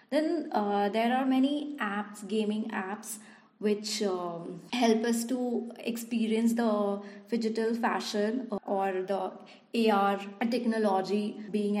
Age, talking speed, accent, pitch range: 20-39, 115 wpm, Indian, 185-220 Hz